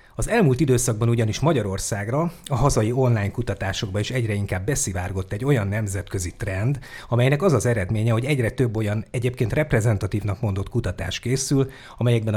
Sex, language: male, Hungarian